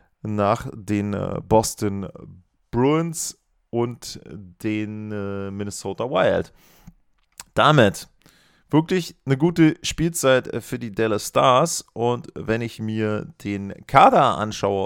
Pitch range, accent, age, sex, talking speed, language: 110-150 Hz, German, 30-49, male, 95 wpm, German